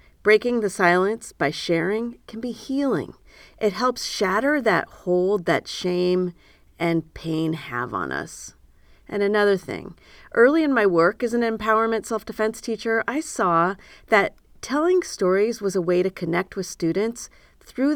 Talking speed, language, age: 150 wpm, English, 40-59